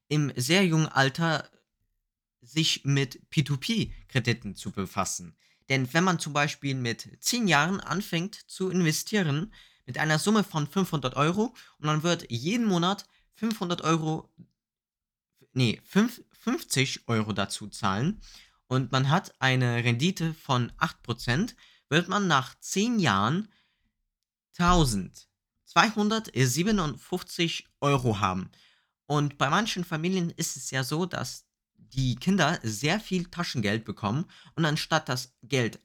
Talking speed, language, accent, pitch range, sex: 120 wpm, German, German, 125-180 Hz, male